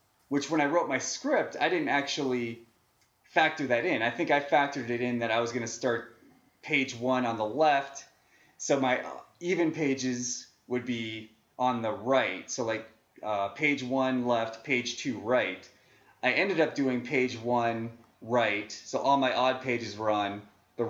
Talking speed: 180 wpm